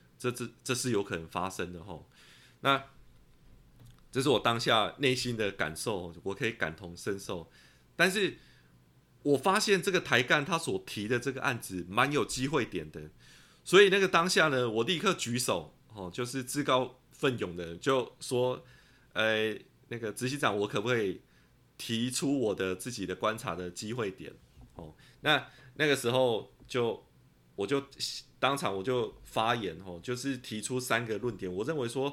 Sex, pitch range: male, 105-135 Hz